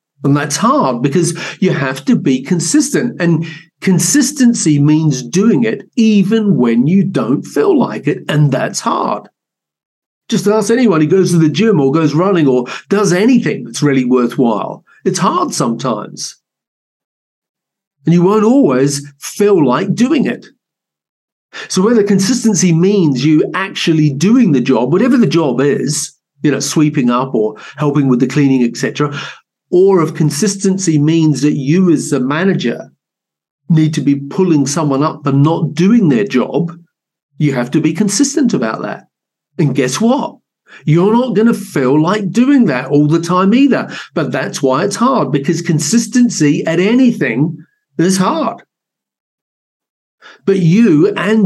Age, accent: 50-69, British